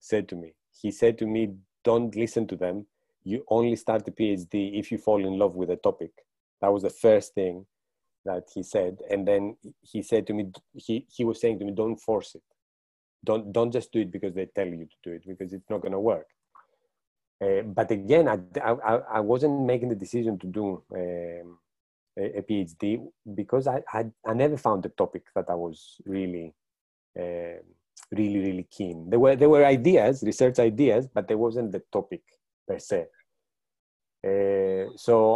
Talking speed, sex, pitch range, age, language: 190 wpm, male, 90-115 Hz, 30-49, English